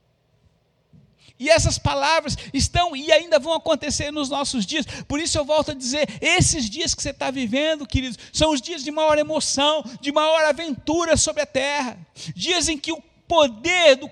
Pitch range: 265-310 Hz